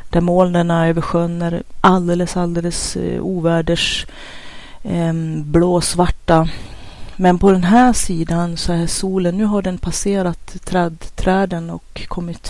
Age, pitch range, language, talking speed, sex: 30-49, 165-185 Hz, Swedish, 110 wpm, female